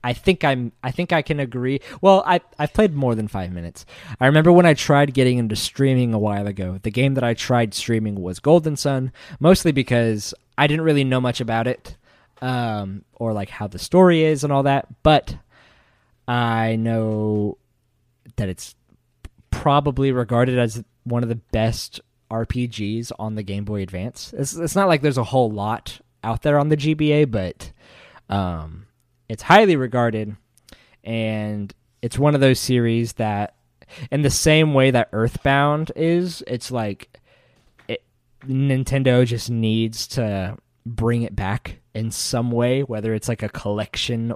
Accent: American